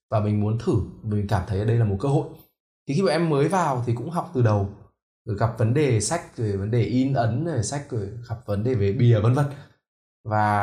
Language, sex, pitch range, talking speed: Vietnamese, male, 105-135 Hz, 255 wpm